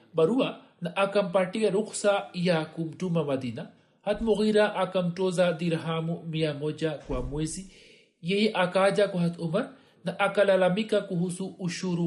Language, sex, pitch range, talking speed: Swahili, male, 180-220 Hz, 110 wpm